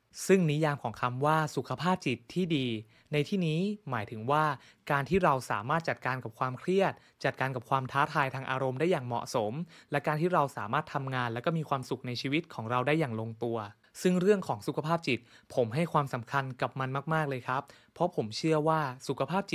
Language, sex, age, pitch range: Thai, male, 20-39, 125-155 Hz